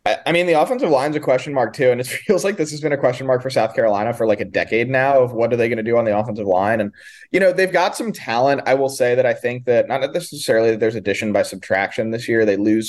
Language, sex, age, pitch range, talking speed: English, male, 20-39, 105-130 Hz, 295 wpm